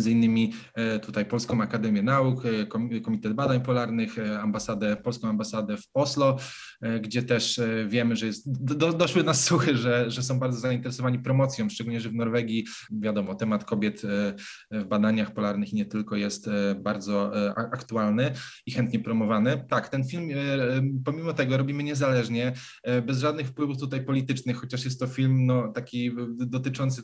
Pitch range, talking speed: 120-135 Hz, 145 wpm